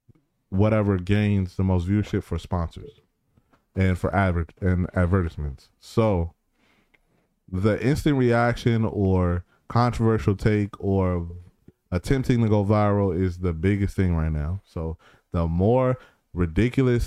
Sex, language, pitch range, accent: male, English, 90-110 Hz, American